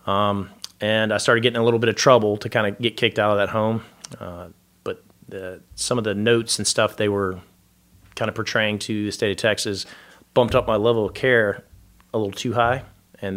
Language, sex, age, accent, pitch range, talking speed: English, male, 30-49, American, 95-115 Hz, 220 wpm